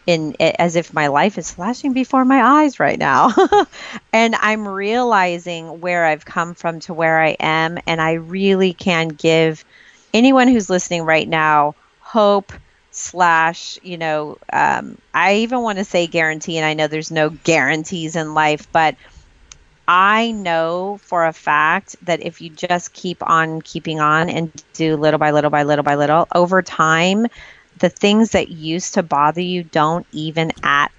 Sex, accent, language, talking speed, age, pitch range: female, American, English, 170 wpm, 30-49, 155-190 Hz